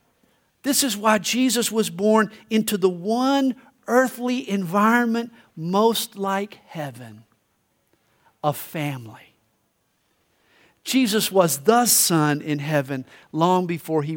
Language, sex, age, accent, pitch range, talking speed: English, male, 50-69, American, 155-230 Hz, 105 wpm